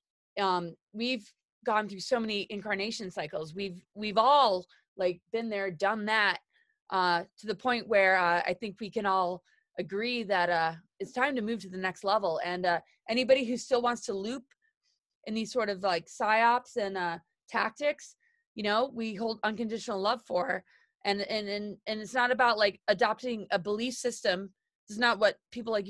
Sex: female